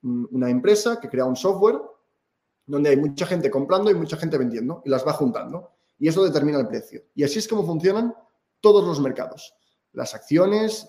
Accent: Spanish